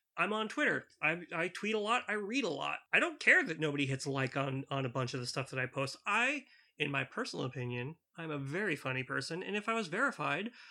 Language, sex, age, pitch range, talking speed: English, male, 30-49, 145-220 Hz, 250 wpm